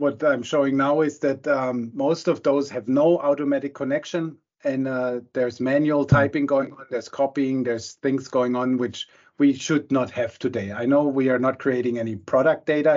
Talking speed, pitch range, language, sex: 195 wpm, 125-140 Hz, English, male